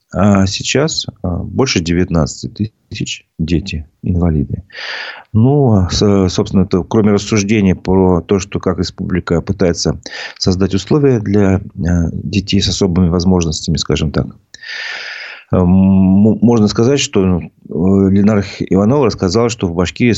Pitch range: 90-105 Hz